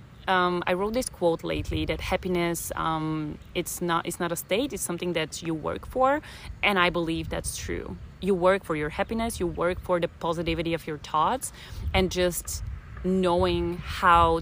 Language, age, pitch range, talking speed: Bulgarian, 30-49, 155-185 Hz, 180 wpm